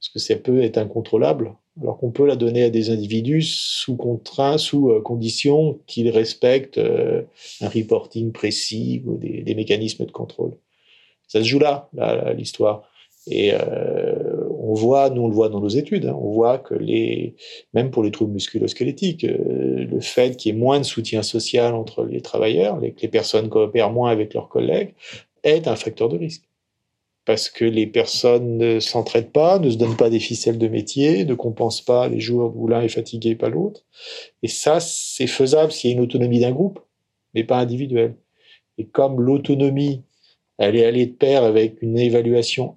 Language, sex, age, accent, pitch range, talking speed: French, male, 40-59, French, 115-150 Hz, 180 wpm